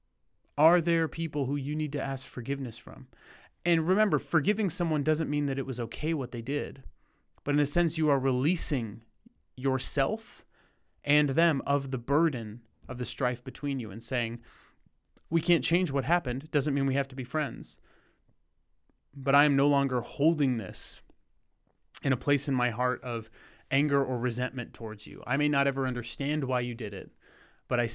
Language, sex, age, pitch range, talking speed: English, male, 30-49, 115-145 Hz, 185 wpm